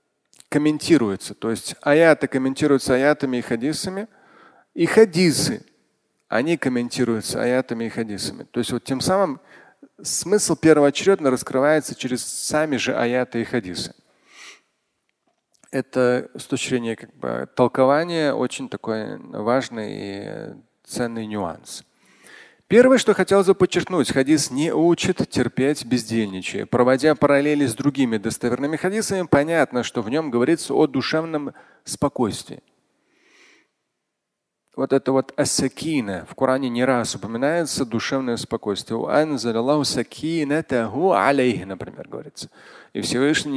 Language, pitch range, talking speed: Russian, 120-150 Hz, 105 wpm